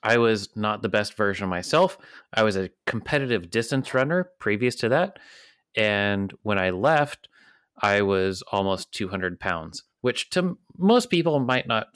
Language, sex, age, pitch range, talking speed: English, male, 30-49, 90-120 Hz, 160 wpm